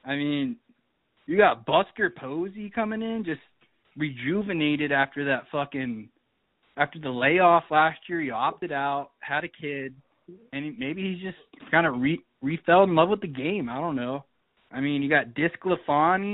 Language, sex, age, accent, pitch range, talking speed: English, male, 20-39, American, 140-180 Hz, 175 wpm